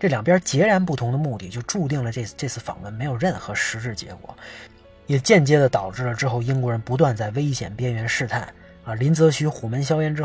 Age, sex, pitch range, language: 20-39, male, 120-170 Hz, Chinese